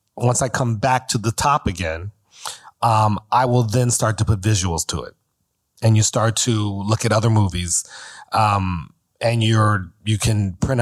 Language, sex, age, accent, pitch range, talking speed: English, male, 30-49, American, 95-120 Hz, 175 wpm